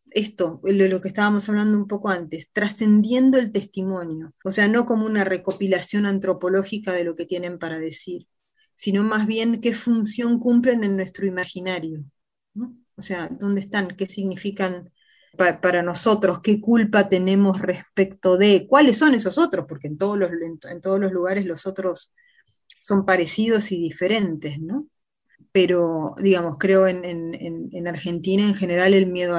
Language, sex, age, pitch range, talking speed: Spanish, female, 30-49, 175-205 Hz, 155 wpm